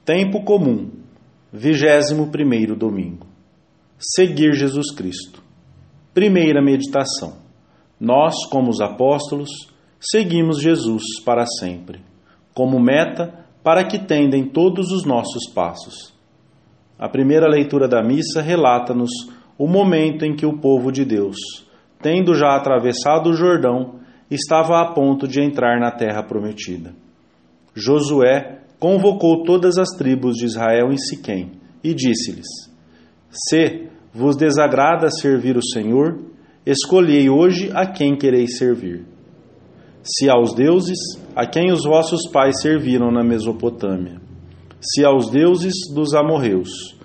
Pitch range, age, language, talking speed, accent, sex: 115-160 Hz, 40-59, English, 120 wpm, Brazilian, male